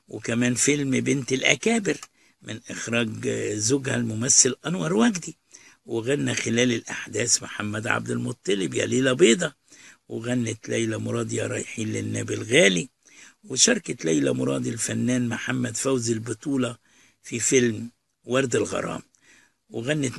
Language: Arabic